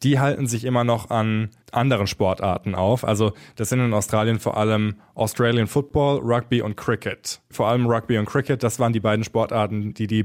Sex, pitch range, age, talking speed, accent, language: male, 110-130 Hz, 20-39, 195 wpm, German, German